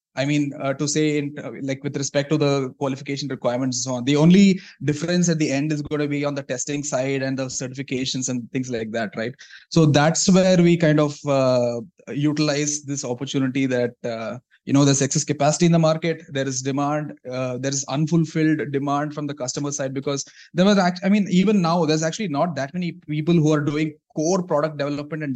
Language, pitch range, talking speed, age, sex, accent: English, 135-165 Hz, 215 wpm, 20-39, male, Indian